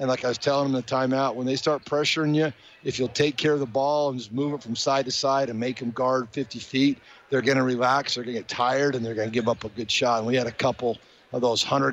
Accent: American